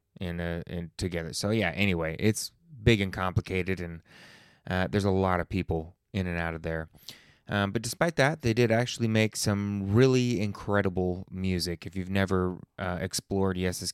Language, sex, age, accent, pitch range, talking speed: English, male, 20-39, American, 95-110 Hz, 170 wpm